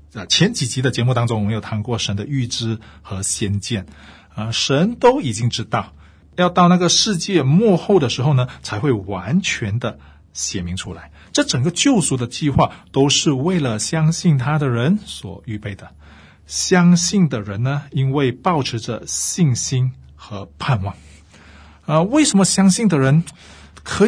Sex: male